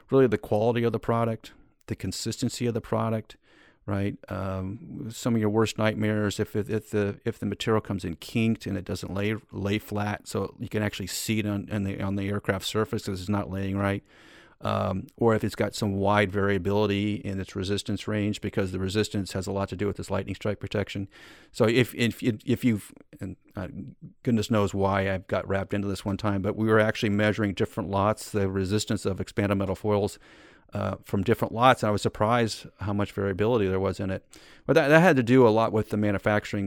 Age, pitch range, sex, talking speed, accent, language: 40-59, 100-115 Hz, male, 215 wpm, American, English